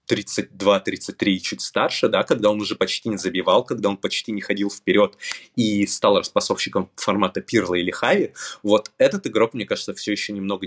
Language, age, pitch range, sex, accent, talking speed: Russian, 20-39, 100-145 Hz, male, native, 180 wpm